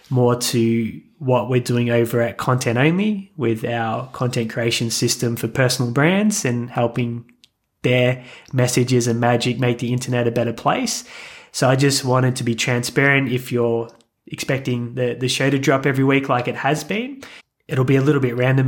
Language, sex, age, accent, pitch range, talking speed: English, male, 20-39, Australian, 120-140 Hz, 180 wpm